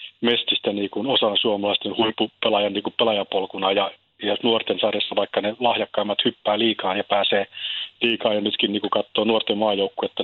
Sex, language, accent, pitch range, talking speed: male, Finnish, native, 100-115 Hz, 150 wpm